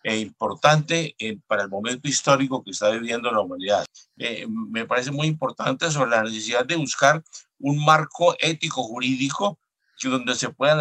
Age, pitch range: 50-69, 130-165 Hz